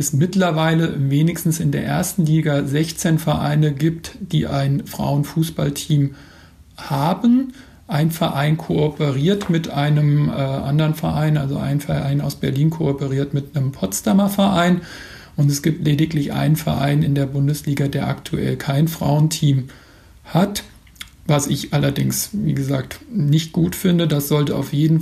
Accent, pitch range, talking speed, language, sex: German, 140-165 Hz, 140 wpm, German, male